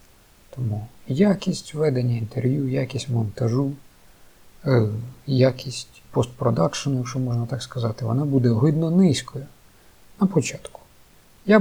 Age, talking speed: 50-69, 105 wpm